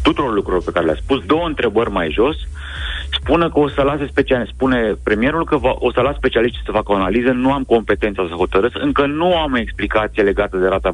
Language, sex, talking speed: Romanian, male, 225 wpm